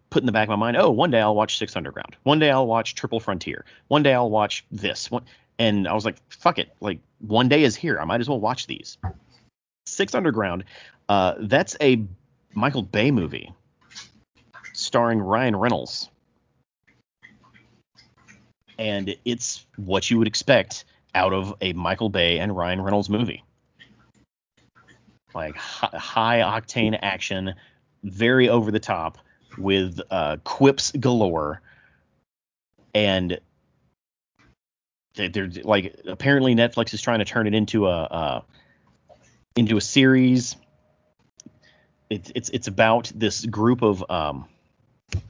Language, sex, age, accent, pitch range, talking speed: English, male, 40-59, American, 95-120 Hz, 140 wpm